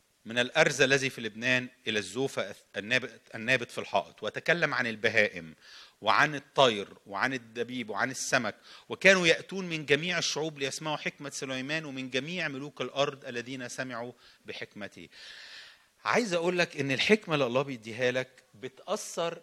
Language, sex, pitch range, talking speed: English, male, 115-165 Hz, 135 wpm